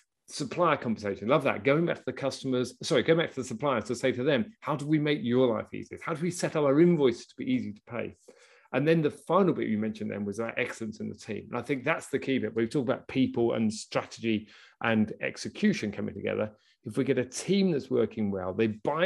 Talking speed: 250 wpm